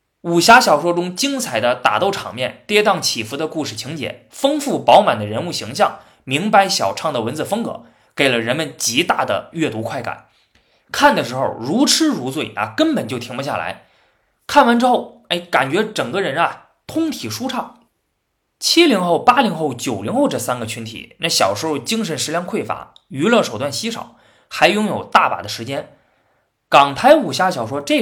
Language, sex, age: Chinese, male, 20-39